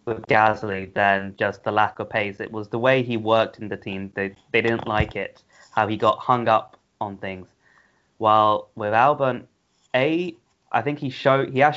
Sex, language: male, English